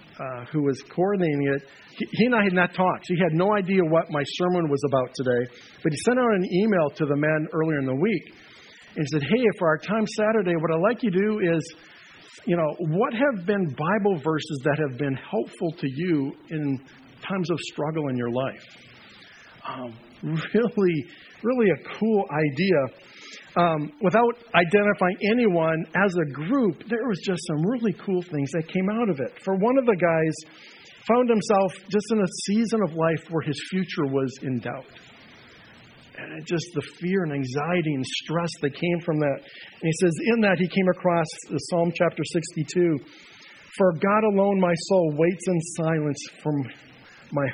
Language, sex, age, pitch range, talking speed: English, male, 50-69, 150-195 Hz, 185 wpm